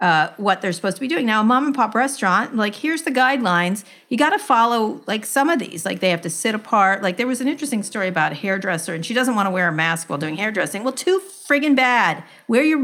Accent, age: American, 50-69